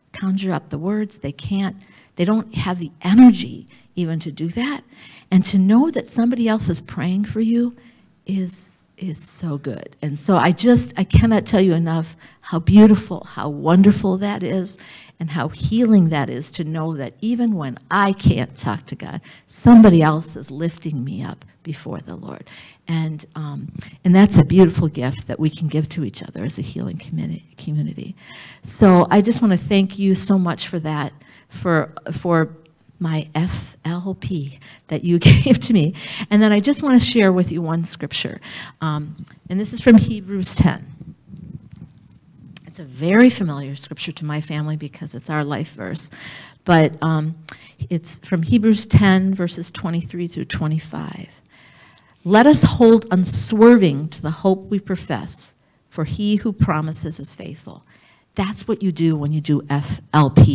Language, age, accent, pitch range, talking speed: English, 50-69, American, 150-195 Hz, 170 wpm